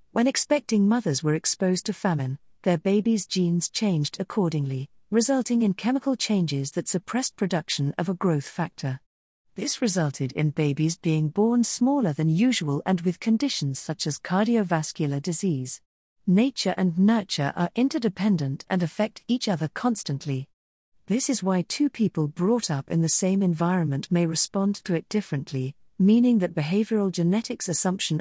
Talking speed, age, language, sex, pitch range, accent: 150 wpm, 50-69, English, female, 160-215 Hz, British